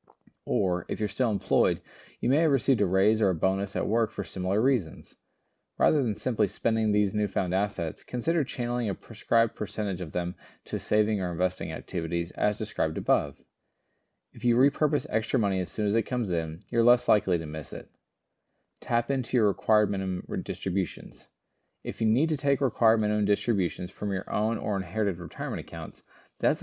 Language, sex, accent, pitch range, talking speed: English, male, American, 90-120 Hz, 180 wpm